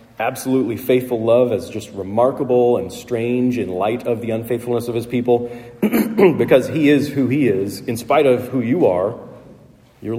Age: 40-59